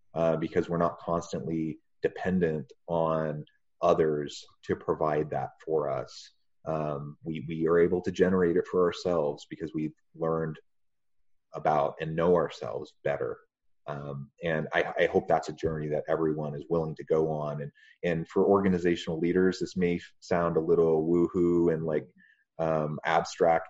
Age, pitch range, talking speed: 30-49, 80-90 Hz, 160 wpm